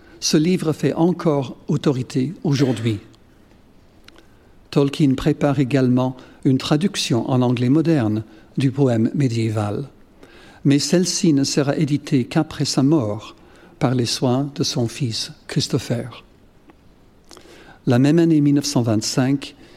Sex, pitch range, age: male, 125-155 Hz, 60-79